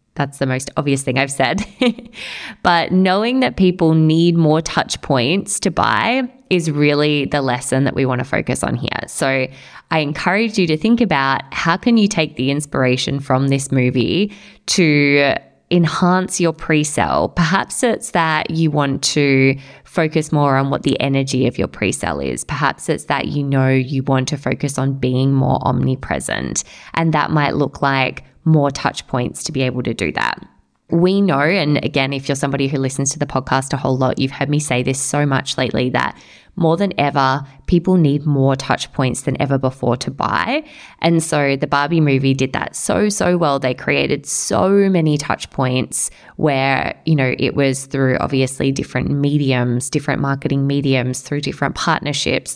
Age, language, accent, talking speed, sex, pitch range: 20-39, English, Australian, 180 wpm, female, 135-160 Hz